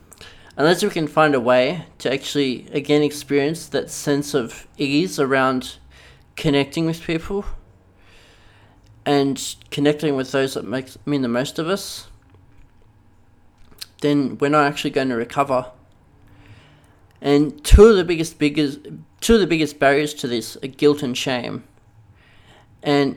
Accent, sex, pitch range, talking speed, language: Australian, male, 105-145 Hz, 140 wpm, English